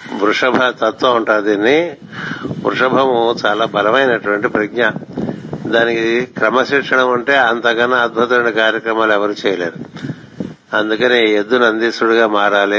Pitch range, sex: 105-120 Hz, male